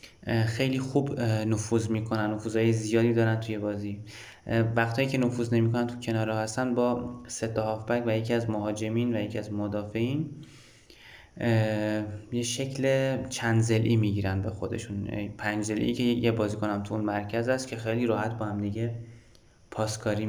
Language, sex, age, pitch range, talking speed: Persian, male, 20-39, 105-115 Hz, 140 wpm